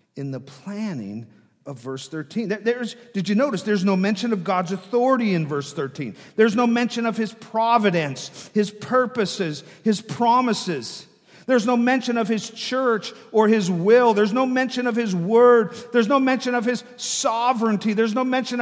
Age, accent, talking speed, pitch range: 50-69, American, 170 wpm, 155-230 Hz